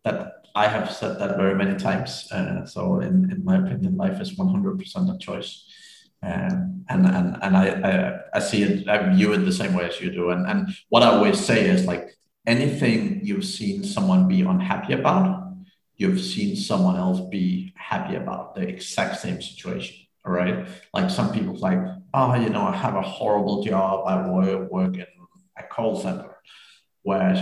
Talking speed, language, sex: 190 wpm, English, male